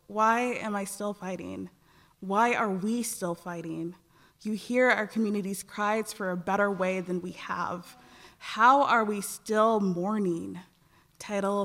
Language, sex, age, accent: English, female, 20-39, American